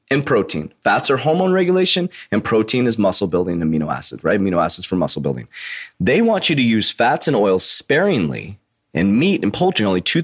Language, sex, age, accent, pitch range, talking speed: English, male, 30-49, American, 125-190 Hz, 200 wpm